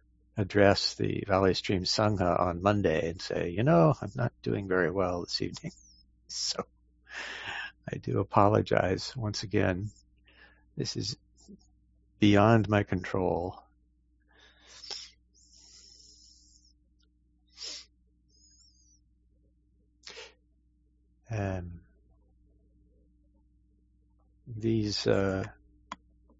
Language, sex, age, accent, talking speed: English, male, 60-79, American, 70 wpm